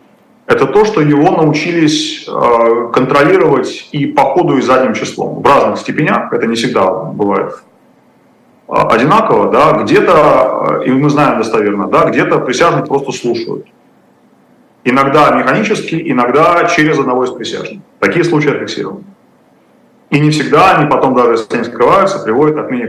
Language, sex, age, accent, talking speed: Russian, male, 30-49, native, 135 wpm